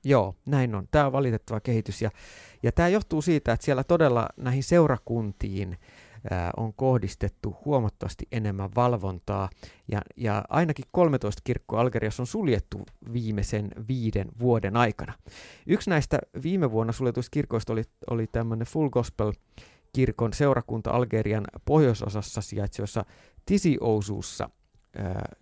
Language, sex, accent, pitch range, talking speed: Finnish, male, native, 105-135 Hz, 125 wpm